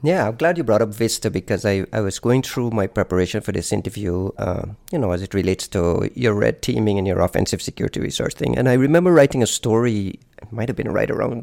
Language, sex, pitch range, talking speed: English, male, 100-120 Hz, 240 wpm